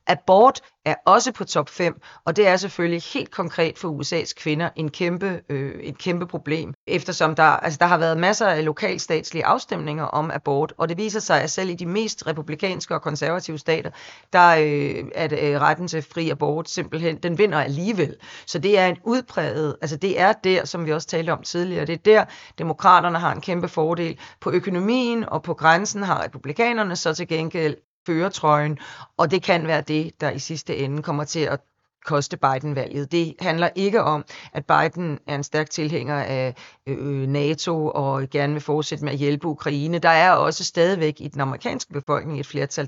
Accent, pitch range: native, 150-175 Hz